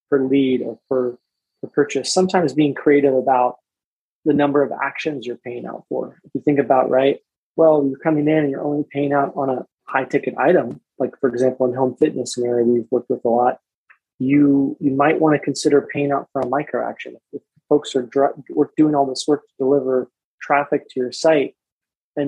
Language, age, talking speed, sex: English, 20-39, 200 wpm, male